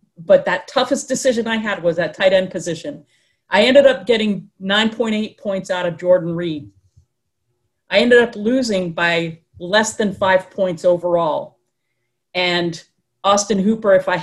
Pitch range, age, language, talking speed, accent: 170-215 Hz, 40-59, English, 150 wpm, American